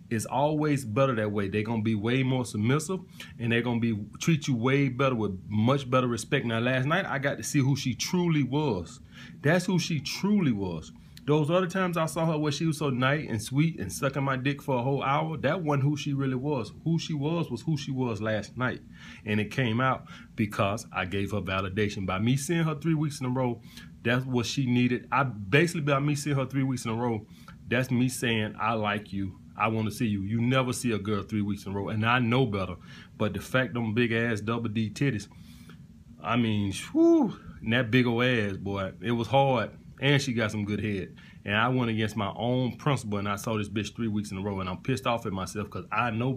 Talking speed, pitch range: 235 wpm, 110-140 Hz